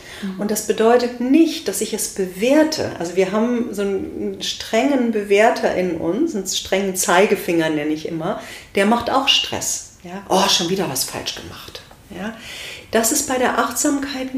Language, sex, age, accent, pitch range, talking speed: German, female, 40-59, German, 190-250 Hz, 160 wpm